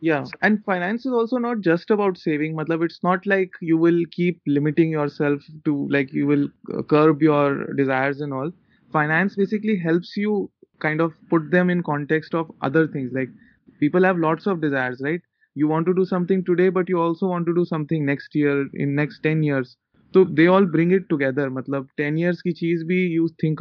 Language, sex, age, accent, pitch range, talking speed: Hindi, male, 20-39, native, 140-175 Hz, 210 wpm